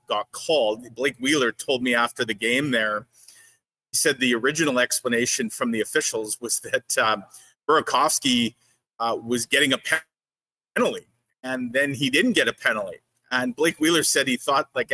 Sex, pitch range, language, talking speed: male, 120-155 Hz, English, 165 wpm